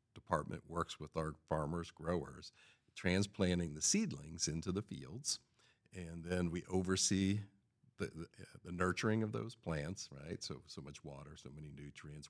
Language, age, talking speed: English, 50-69, 150 wpm